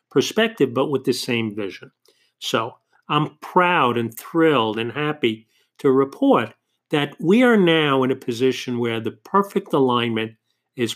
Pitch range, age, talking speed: 125-155 Hz, 50-69, 150 wpm